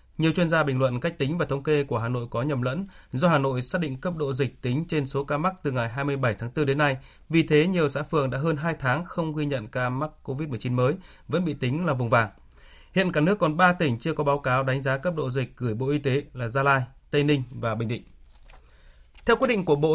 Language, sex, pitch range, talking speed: Vietnamese, male, 125-150 Hz, 270 wpm